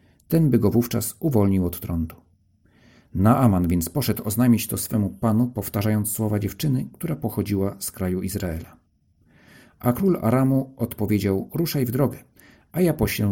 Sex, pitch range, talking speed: male, 95-120 Hz, 145 wpm